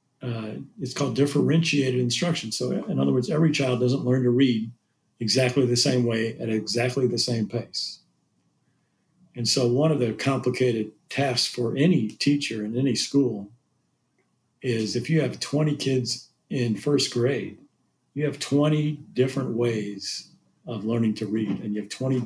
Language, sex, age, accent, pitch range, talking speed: English, male, 40-59, American, 110-130 Hz, 160 wpm